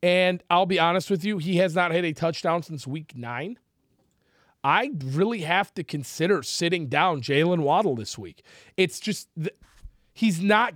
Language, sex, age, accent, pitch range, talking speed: English, male, 30-49, American, 175-220 Hz, 165 wpm